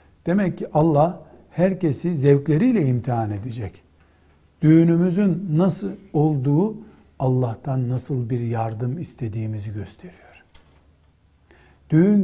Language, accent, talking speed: Turkish, native, 85 wpm